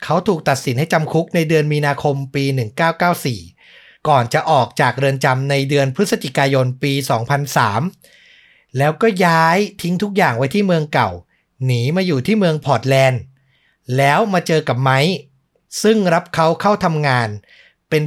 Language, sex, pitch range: Thai, male, 135-170 Hz